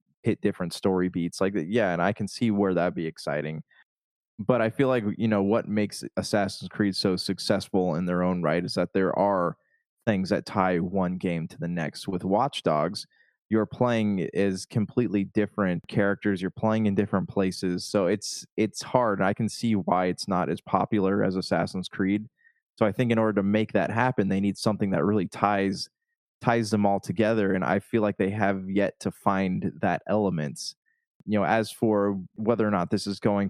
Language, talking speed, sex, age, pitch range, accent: English, 200 wpm, male, 20-39, 95-115 Hz, American